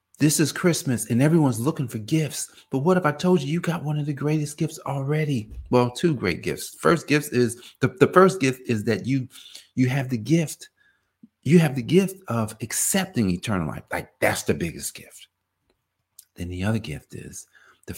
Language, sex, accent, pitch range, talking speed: English, male, American, 95-150 Hz, 195 wpm